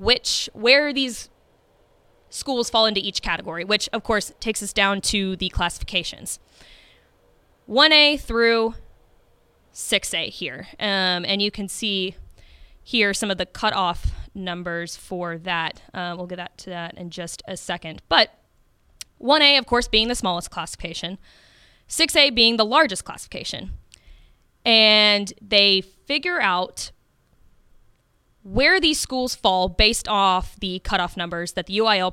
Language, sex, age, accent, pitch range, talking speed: English, female, 20-39, American, 180-230 Hz, 135 wpm